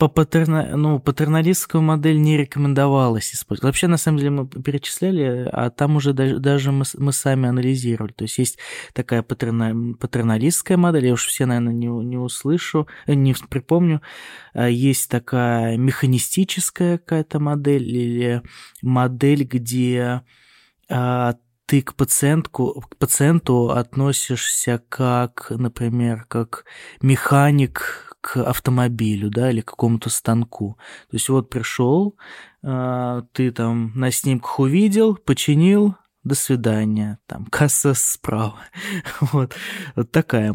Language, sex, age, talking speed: Russian, male, 20-39, 120 wpm